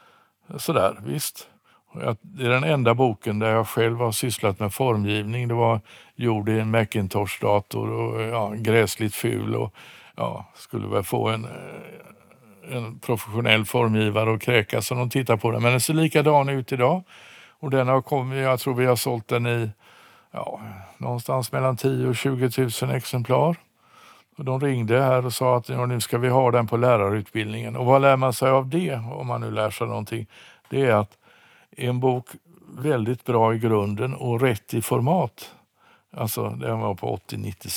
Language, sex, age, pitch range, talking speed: Swedish, male, 60-79, 110-130 Hz, 175 wpm